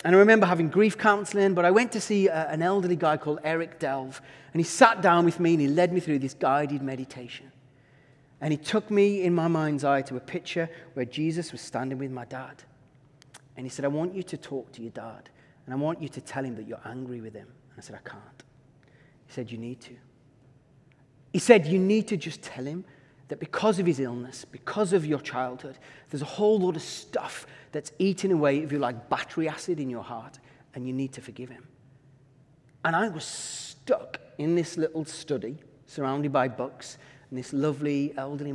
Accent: British